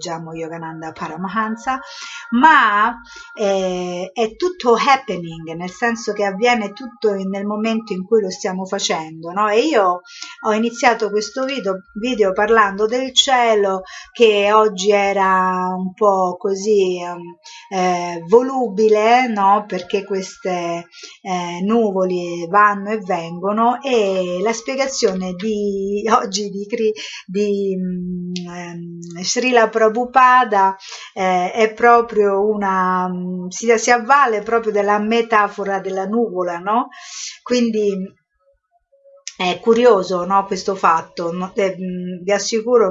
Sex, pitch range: female, 180-230 Hz